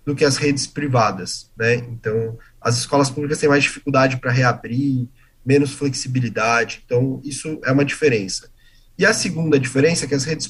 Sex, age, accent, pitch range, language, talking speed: male, 20-39, Brazilian, 125-150 Hz, Portuguese, 170 wpm